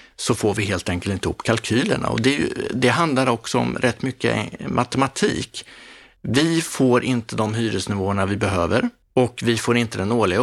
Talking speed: 180 wpm